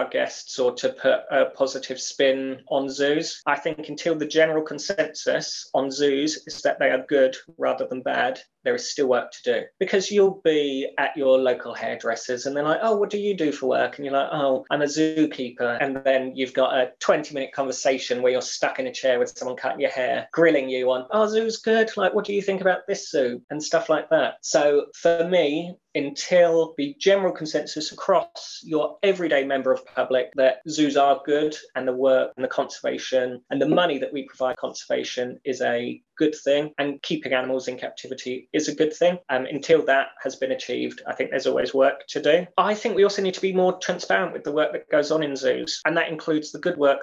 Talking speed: 220 wpm